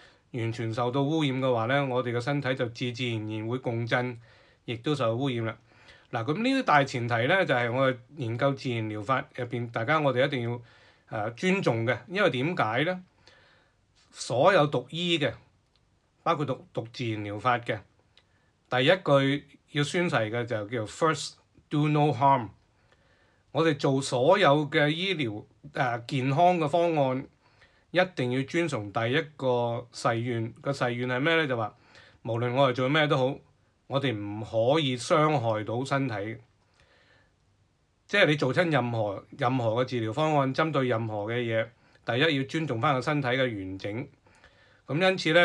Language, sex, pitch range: Chinese, male, 115-145 Hz